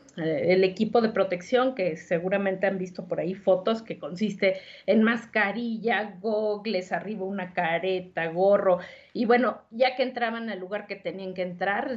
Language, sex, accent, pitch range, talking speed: Spanish, female, Mexican, 180-235 Hz, 155 wpm